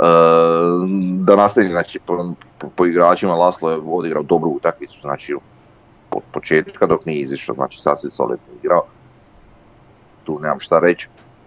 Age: 30-49